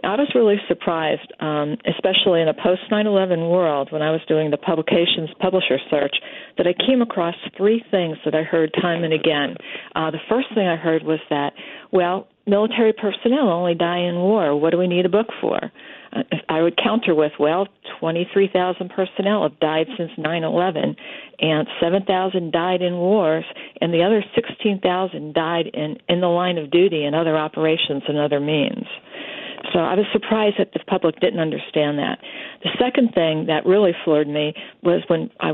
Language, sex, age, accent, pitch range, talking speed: English, female, 50-69, American, 160-205 Hz, 175 wpm